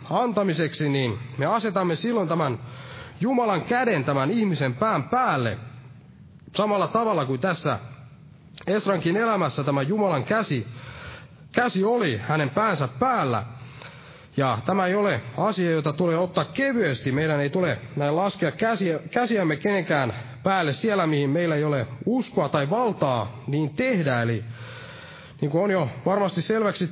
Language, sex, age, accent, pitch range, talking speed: Finnish, male, 30-49, native, 135-195 Hz, 135 wpm